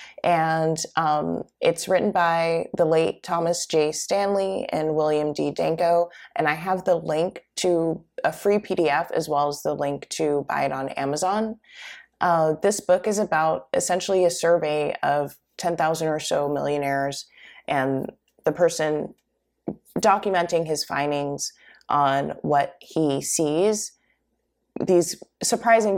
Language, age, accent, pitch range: English, 20-39, American, 150-190 Hz